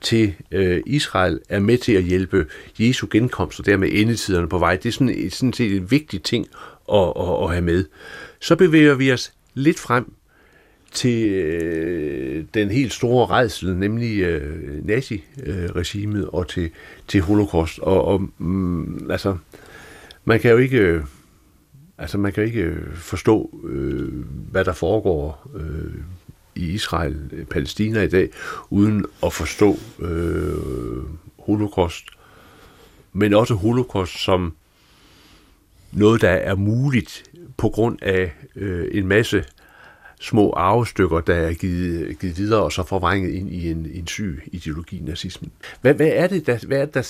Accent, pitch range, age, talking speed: native, 85-115 Hz, 60-79, 140 wpm